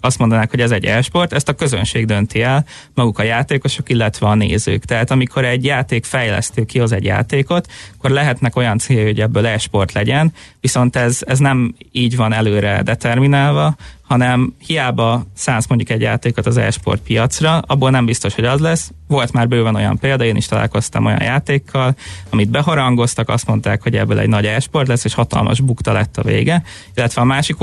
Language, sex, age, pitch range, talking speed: Hungarian, male, 20-39, 110-135 Hz, 185 wpm